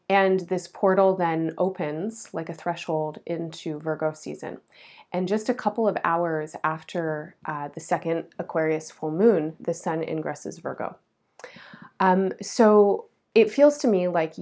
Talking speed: 145 wpm